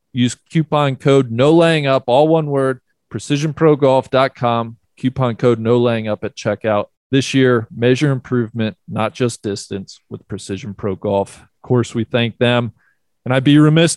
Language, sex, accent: English, male, American